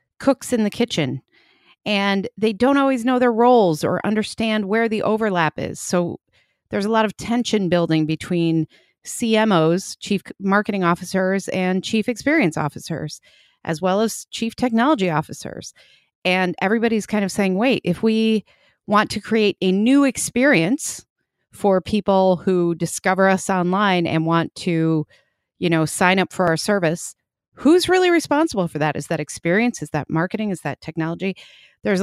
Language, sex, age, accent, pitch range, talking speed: English, female, 30-49, American, 165-215 Hz, 155 wpm